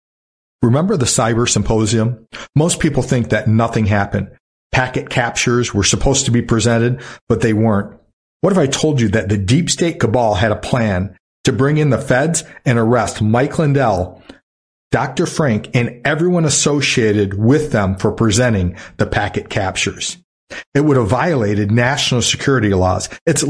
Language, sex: English, male